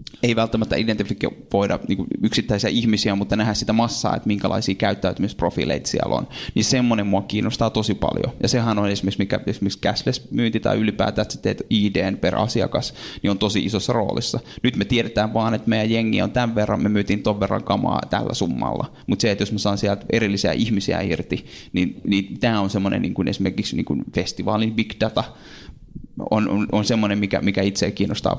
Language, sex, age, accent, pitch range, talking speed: Finnish, male, 20-39, native, 100-115 Hz, 180 wpm